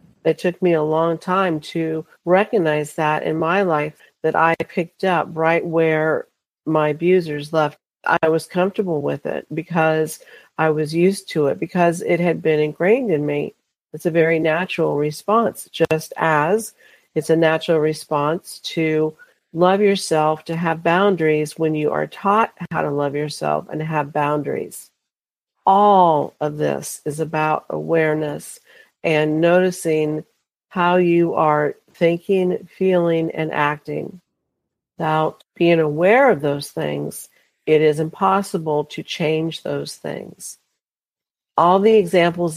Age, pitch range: 50-69, 155-175 Hz